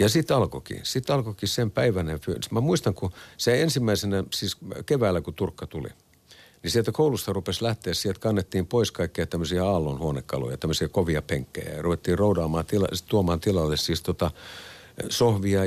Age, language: 50-69, Finnish